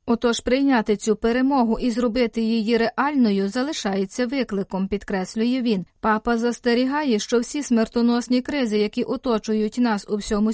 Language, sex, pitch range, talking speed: Ukrainian, female, 215-270 Hz, 130 wpm